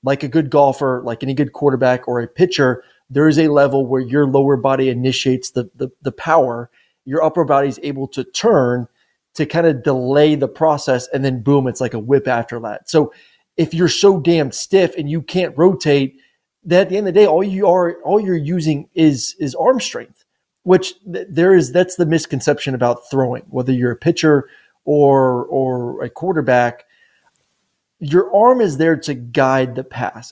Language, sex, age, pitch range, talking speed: English, male, 30-49, 130-170 Hz, 195 wpm